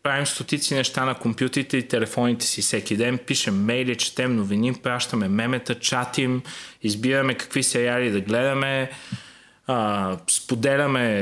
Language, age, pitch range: Bulgarian, 20-39, 125-150 Hz